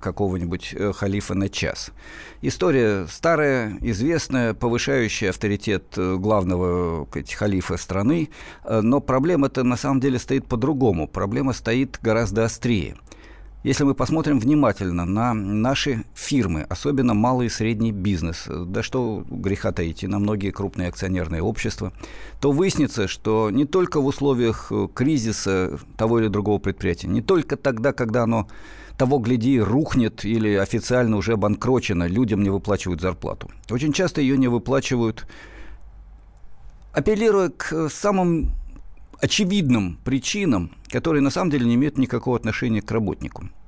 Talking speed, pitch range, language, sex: 125 wpm, 100-135 Hz, Russian, male